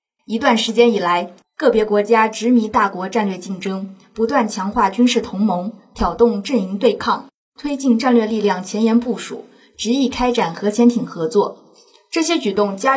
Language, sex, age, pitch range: Chinese, female, 20-39, 205-245 Hz